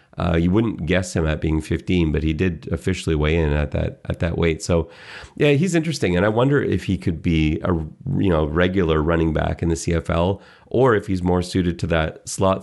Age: 30-49